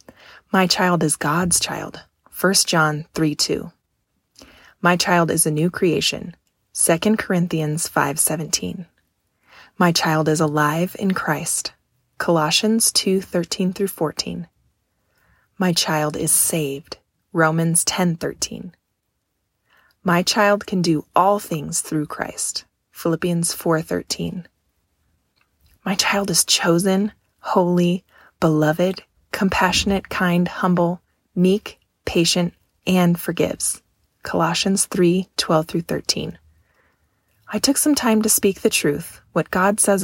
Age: 20-39